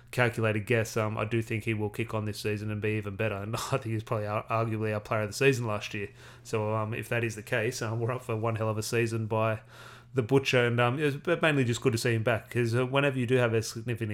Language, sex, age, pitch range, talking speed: English, male, 30-49, 110-125 Hz, 275 wpm